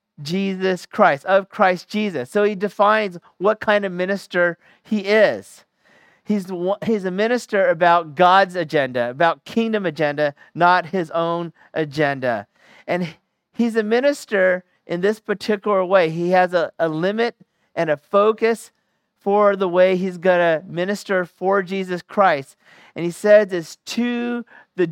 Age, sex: 40-59, male